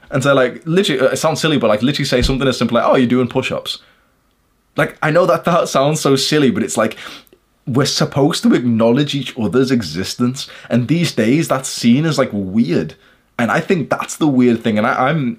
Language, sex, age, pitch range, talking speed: English, male, 20-39, 105-130 Hz, 210 wpm